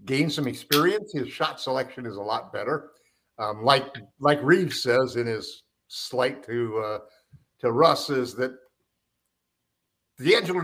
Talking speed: 140 wpm